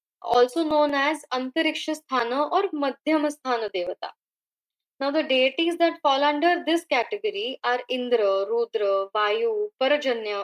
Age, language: 20-39, Marathi